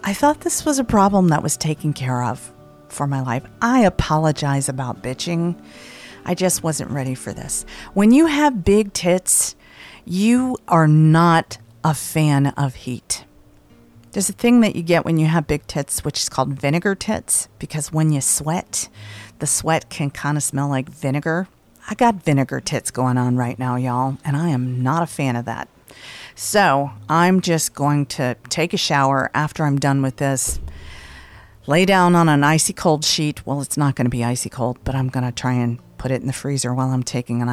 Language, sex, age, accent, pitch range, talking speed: English, female, 40-59, American, 125-180 Hz, 200 wpm